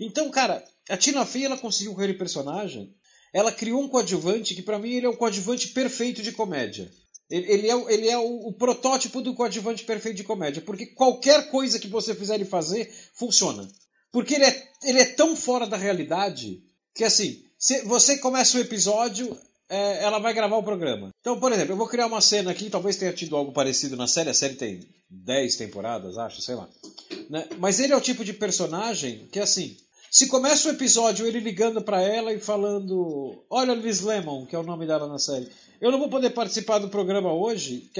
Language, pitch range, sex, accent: Portuguese, 190-250 Hz, male, Brazilian